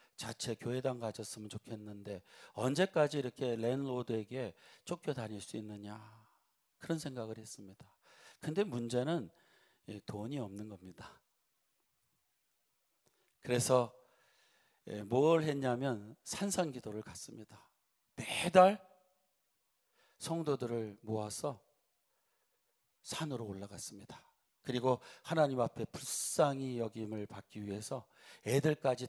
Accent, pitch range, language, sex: native, 110-155 Hz, Korean, male